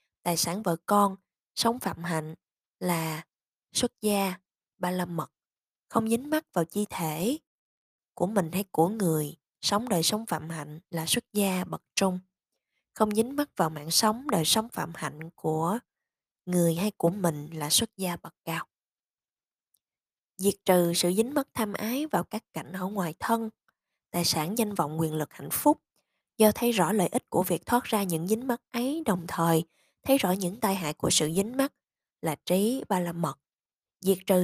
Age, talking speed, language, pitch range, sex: 20-39, 185 wpm, Vietnamese, 170-215 Hz, female